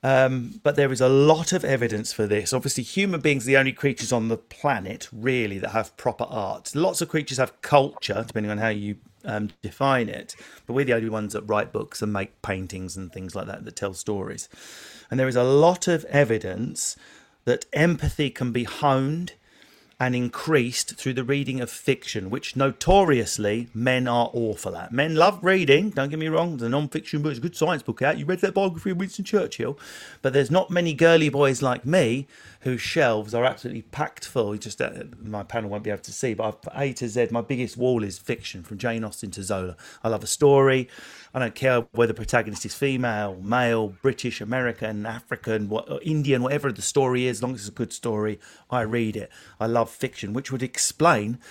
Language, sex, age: English, male, 40-59